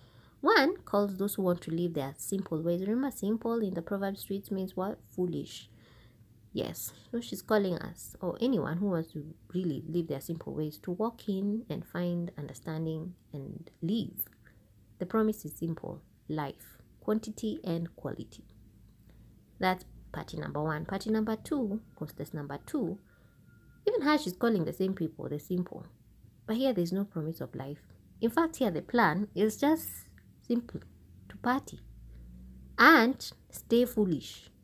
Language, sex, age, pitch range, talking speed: English, female, 20-39, 150-215 Hz, 155 wpm